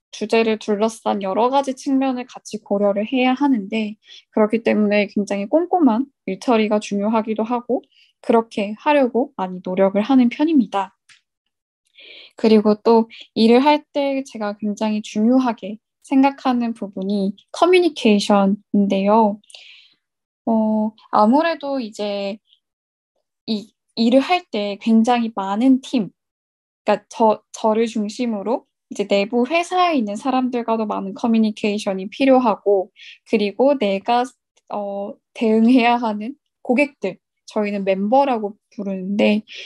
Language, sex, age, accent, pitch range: Korean, female, 10-29, native, 205-265 Hz